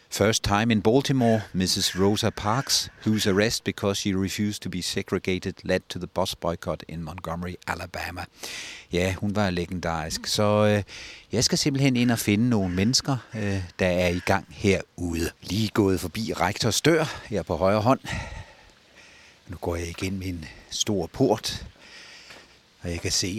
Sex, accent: male, native